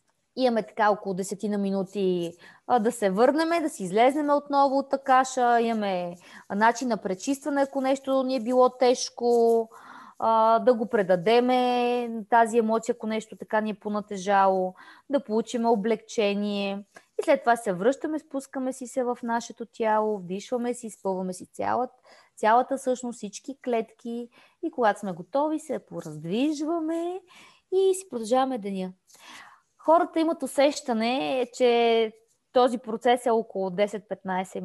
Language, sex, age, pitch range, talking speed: Bulgarian, female, 20-39, 195-250 Hz, 140 wpm